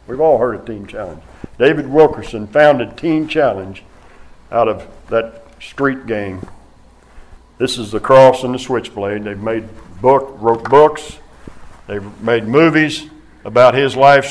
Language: English